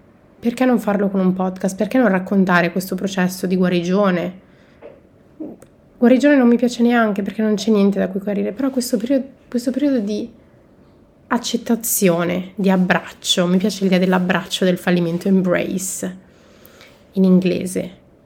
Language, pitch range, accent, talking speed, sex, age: Italian, 180-215 Hz, native, 140 wpm, female, 30-49